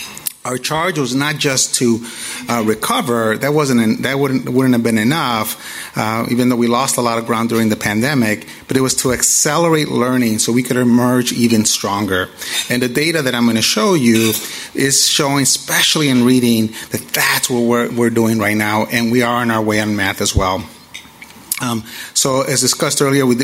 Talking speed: 200 wpm